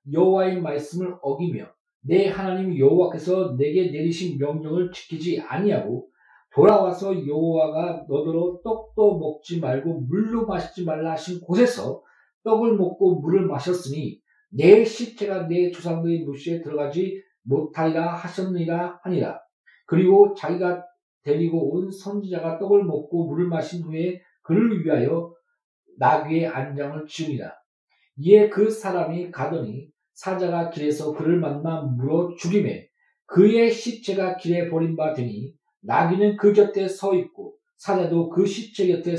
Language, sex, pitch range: Korean, male, 165-200 Hz